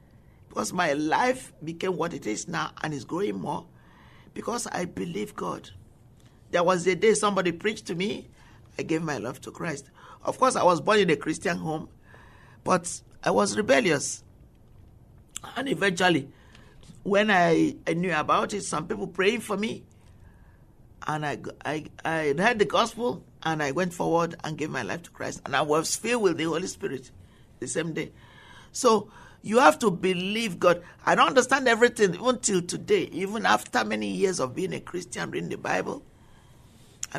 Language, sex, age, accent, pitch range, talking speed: English, male, 50-69, Nigerian, 155-210 Hz, 175 wpm